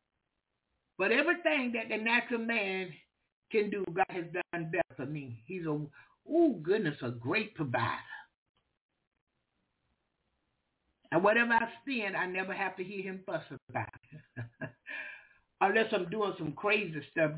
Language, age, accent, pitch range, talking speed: English, 60-79, American, 140-210 Hz, 140 wpm